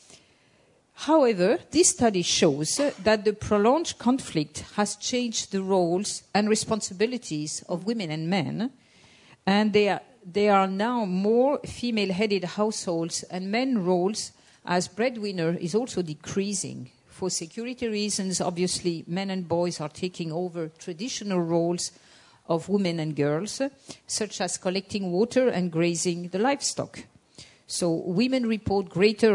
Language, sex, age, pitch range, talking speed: English, female, 50-69, 170-220 Hz, 125 wpm